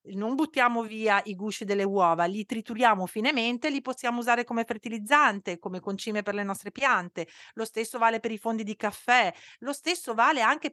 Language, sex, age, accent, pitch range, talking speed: Italian, female, 40-59, native, 180-225 Hz, 185 wpm